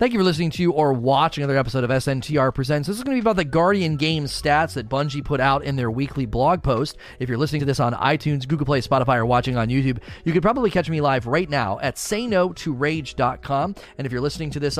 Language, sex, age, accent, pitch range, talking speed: English, male, 30-49, American, 125-155 Hz, 260 wpm